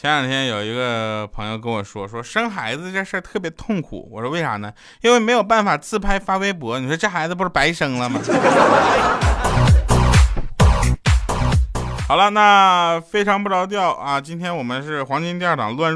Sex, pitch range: male, 115-175 Hz